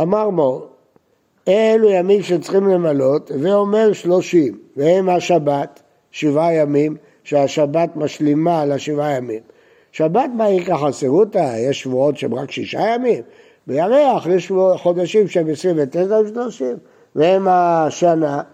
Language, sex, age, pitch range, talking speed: Hebrew, male, 60-79, 150-195 Hz, 115 wpm